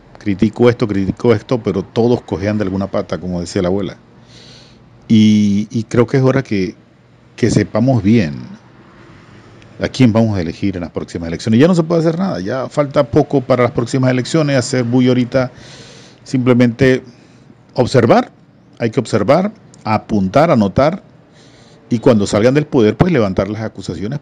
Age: 40-59